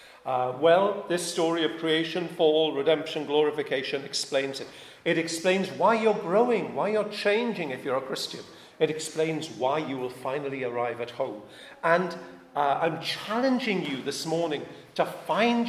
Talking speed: 155 wpm